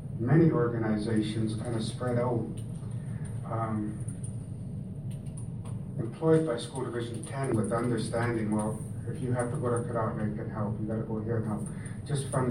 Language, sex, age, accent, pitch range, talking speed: English, male, 60-79, American, 115-145 Hz, 160 wpm